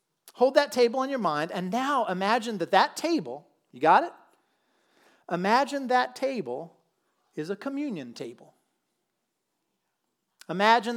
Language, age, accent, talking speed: English, 40-59, American, 125 wpm